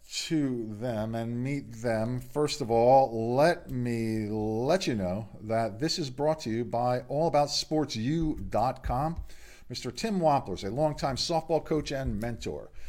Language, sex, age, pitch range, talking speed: English, male, 50-69, 115-155 Hz, 155 wpm